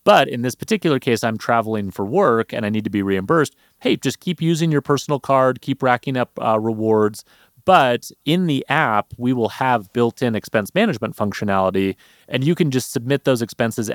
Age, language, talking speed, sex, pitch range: 30-49, English, 195 wpm, male, 105-140 Hz